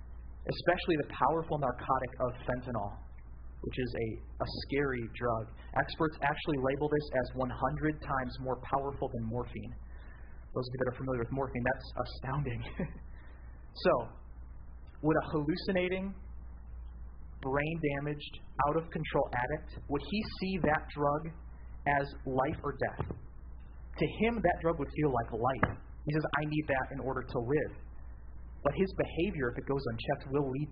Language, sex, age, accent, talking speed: English, male, 30-49, American, 145 wpm